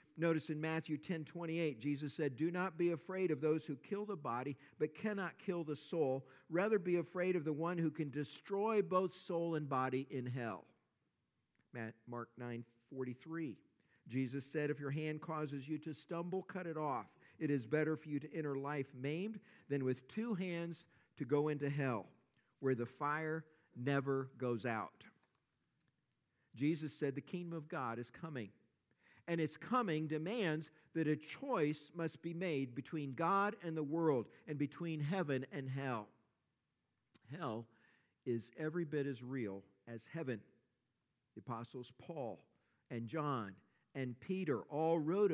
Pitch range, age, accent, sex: 130-170 Hz, 50-69, American, male